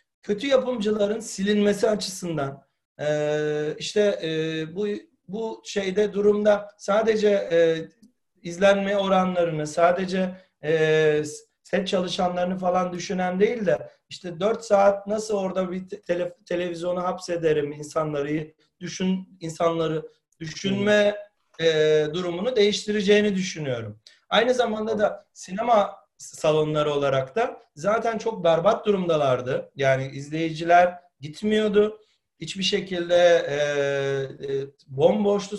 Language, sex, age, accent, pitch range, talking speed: Turkish, male, 40-59, native, 150-205 Hz, 100 wpm